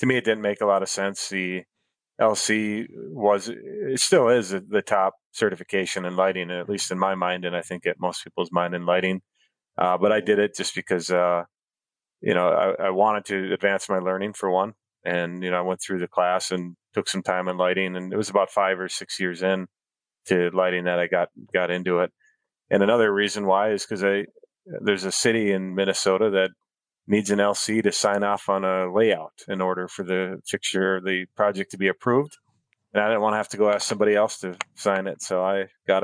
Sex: male